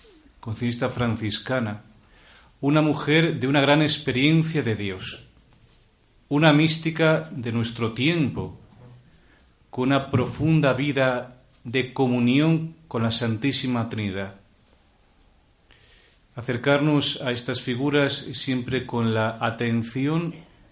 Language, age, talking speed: Spanish, 40-59, 95 wpm